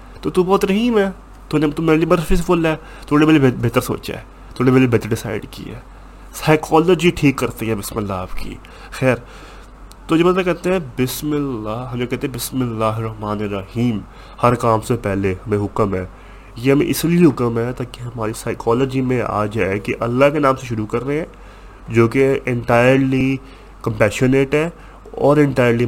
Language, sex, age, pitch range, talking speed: Urdu, male, 20-39, 115-140 Hz, 190 wpm